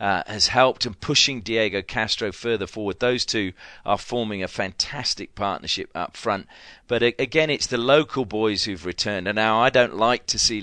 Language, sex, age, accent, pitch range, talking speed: English, male, 40-59, British, 95-115 Hz, 185 wpm